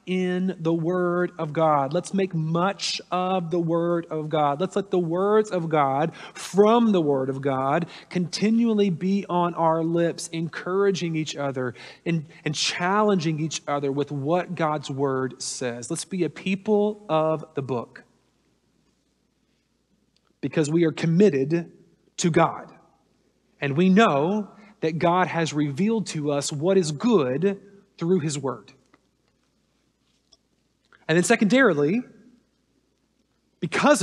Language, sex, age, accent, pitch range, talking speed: English, male, 40-59, American, 160-215 Hz, 130 wpm